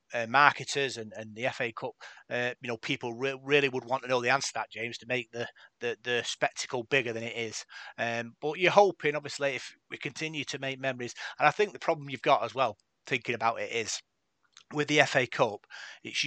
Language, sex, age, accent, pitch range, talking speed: English, male, 30-49, British, 115-135 Hz, 225 wpm